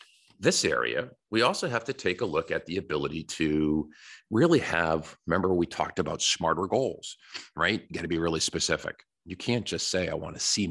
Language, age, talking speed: English, 50-69, 195 wpm